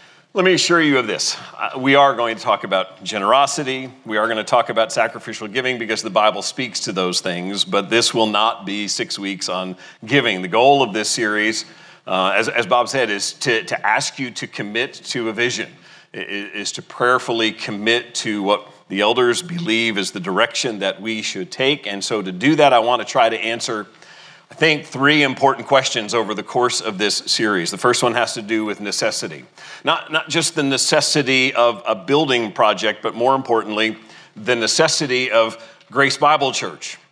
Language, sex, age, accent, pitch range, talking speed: English, male, 40-59, American, 110-135 Hz, 195 wpm